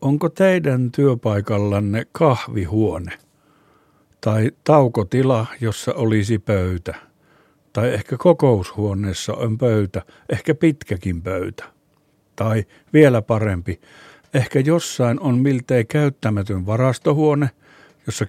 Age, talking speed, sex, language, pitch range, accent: 60-79, 90 wpm, male, Finnish, 100-125 Hz, native